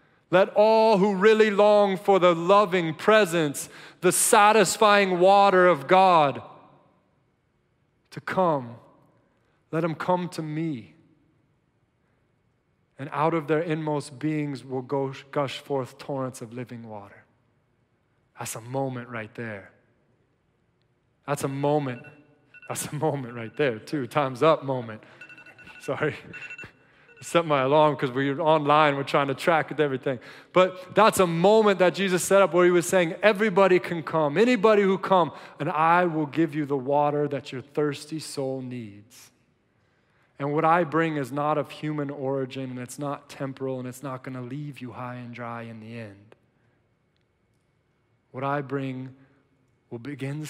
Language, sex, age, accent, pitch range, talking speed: English, male, 20-39, American, 130-165 Hz, 145 wpm